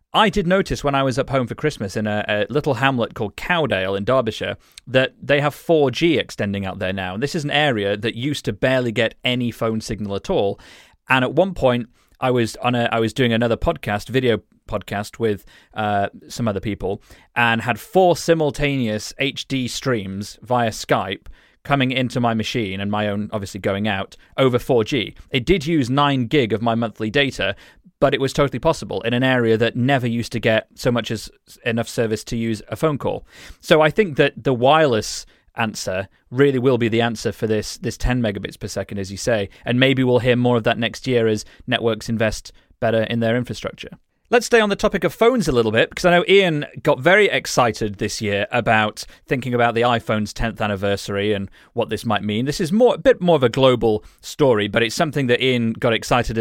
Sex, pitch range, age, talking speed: male, 110-140 Hz, 30-49, 215 wpm